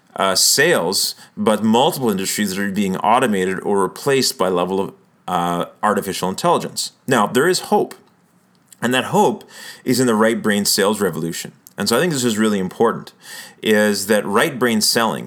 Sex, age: male, 30-49